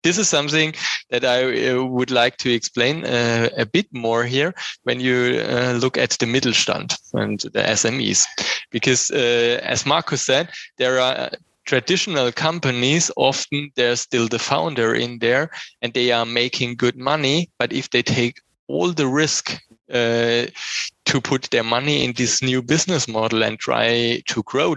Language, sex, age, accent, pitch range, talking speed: English, male, 20-39, German, 120-140 Hz, 160 wpm